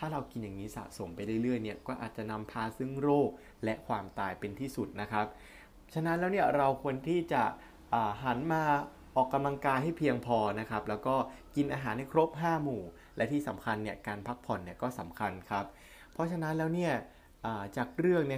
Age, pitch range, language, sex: 20-39, 105-140 Hz, Thai, male